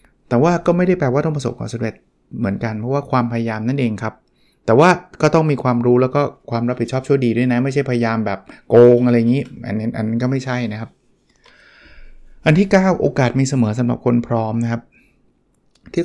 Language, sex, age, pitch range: Thai, male, 20-39, 115-145 Hz